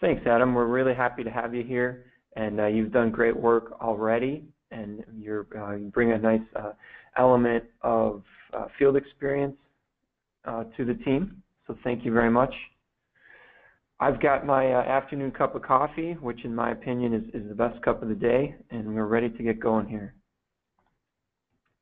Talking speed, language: 180 wpm, English